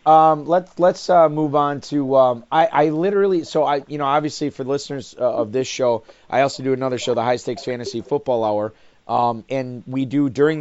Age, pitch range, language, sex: 30-49, 115-145 Hz, English, male